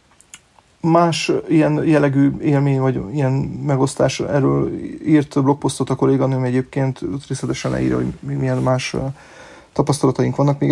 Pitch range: 125-145 Hz